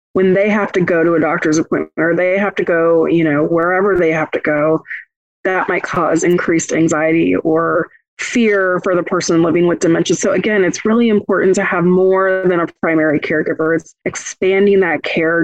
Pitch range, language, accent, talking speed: 170-200 Hz, English, American, 195 wpm